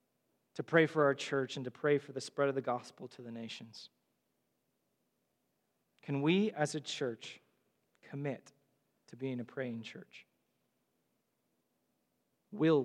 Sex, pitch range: male, 135-165 Hz